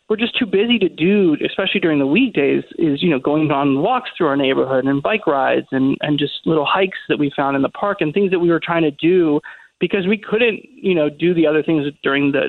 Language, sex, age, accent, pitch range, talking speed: English, male, 30-49, American, 150-205 Hz, 250 wpm